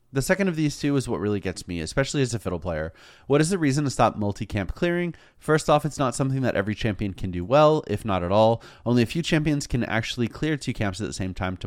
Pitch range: 100-140 Hz